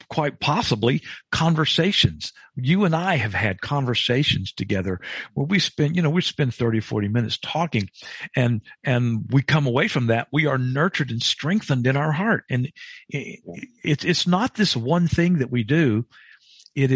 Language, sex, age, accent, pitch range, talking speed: English, male, 50-69, American, 105-150 Hz, 170 wpm